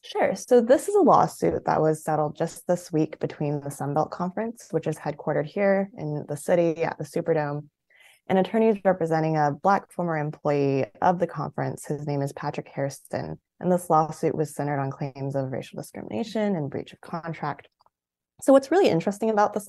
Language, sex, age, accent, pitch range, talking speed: English, female, 20-39, American, 145-195 Hz, 185 wpm